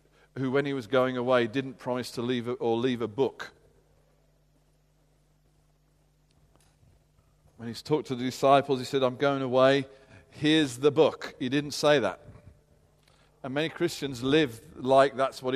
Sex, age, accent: male, 40-59, British